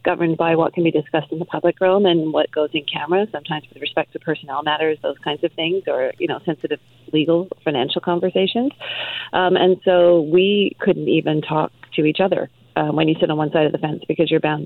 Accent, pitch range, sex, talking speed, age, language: American, 155-175 Hz, female, 225 wpm, 30-49, English